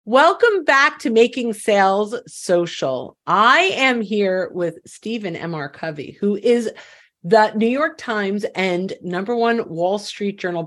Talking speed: 140 wpm